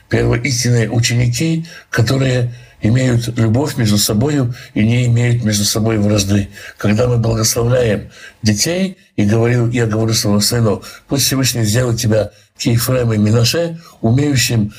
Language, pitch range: Russian, 110-135 Hz